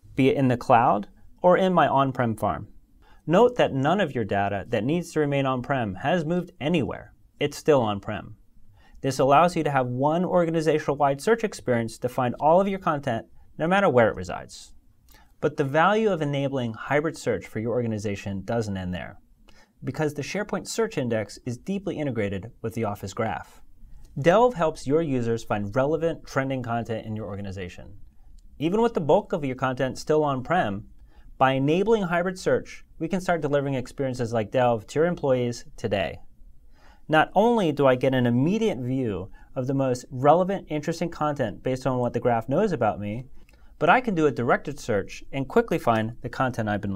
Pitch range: 115-160 Hz